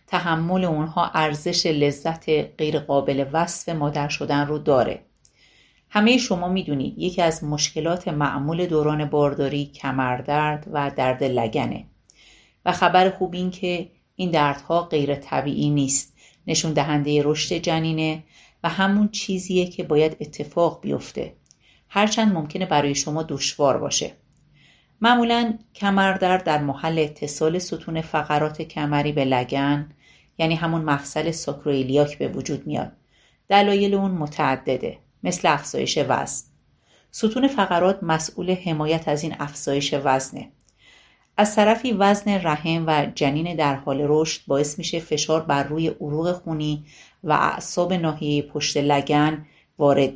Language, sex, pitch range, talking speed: Persian, female, 145-180 Hz, 125 wpm